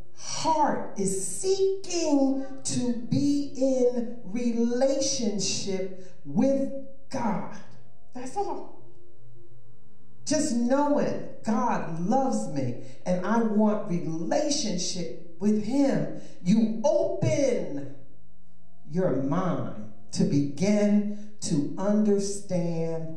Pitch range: 155-245 Hz